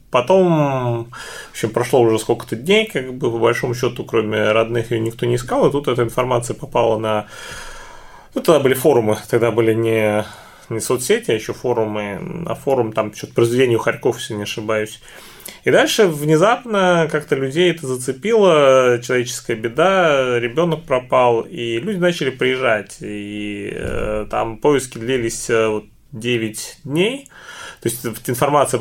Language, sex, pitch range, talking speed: Russian, male, 115-150 Hz, 150 wpm